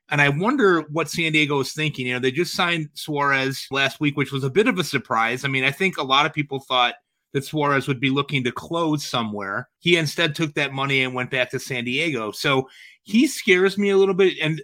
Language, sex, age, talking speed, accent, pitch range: English, male, 30-49, 240 wpm, American, 130-155 Hz